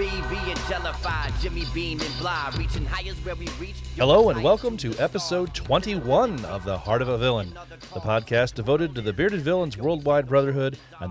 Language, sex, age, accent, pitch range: English, male, 40-59, American, 110-140 Hz